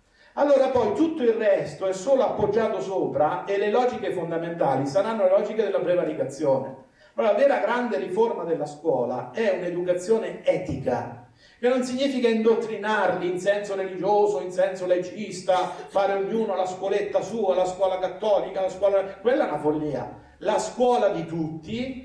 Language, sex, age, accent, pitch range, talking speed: Italian, male, 50-69, native, 185-240 Hz, 150 wpm